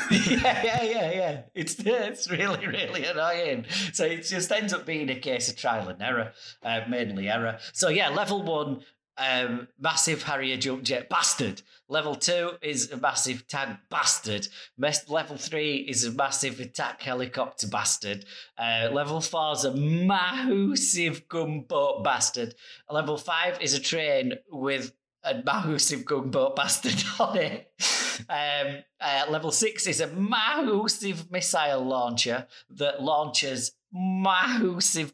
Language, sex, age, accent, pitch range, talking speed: English, male, 30-49, British, 125-170 Hz, 140 wpm